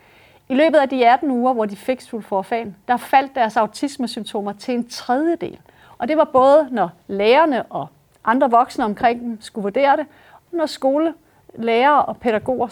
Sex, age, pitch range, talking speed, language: female, 30-49, 215-280 Hz, 170 wpm, Danish